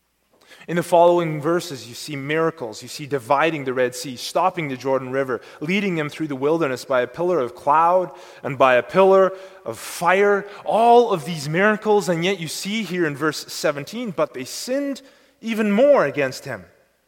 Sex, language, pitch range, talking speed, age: male, English, 140-190 Hz, 185 wpm, 30-49